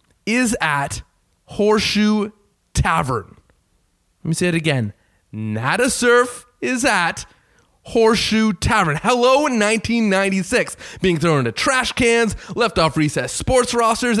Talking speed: 115 wpm